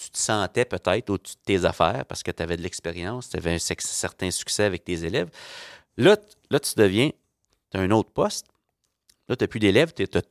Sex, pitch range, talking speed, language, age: male, 85-100 Hz, 225 wpm, French, 30-49